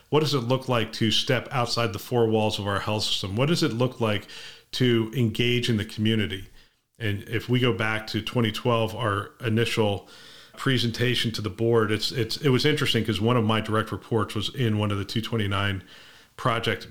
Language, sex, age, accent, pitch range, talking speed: English, male, 40-59, American, 110-130 Hz, 200 wpm